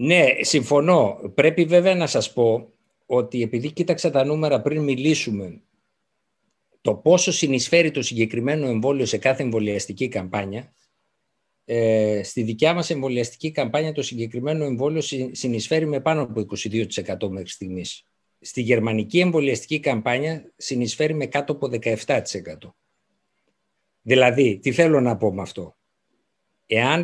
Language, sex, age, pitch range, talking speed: Greek, male, 60-79, 115-155 Hz, 125 wpm